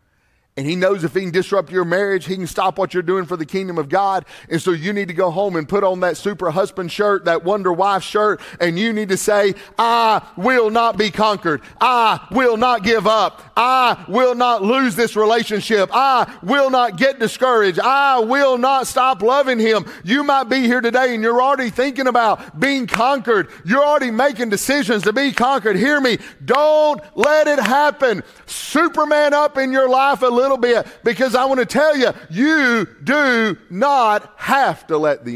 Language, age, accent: English, 40-59, American